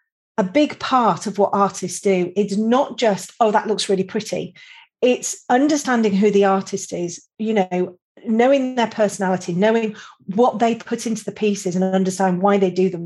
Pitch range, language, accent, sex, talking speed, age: 185-220 Hz, English, British, female, 180 wpm, 40-59